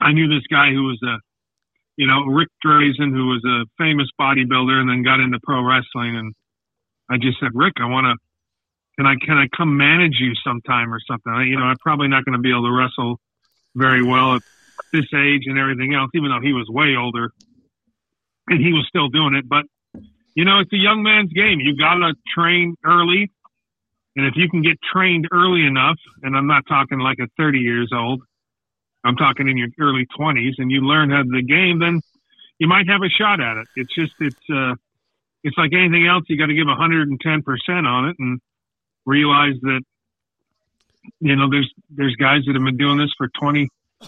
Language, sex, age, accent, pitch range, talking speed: English, male, 40-59, American, 125-155 Hz, 210 wpm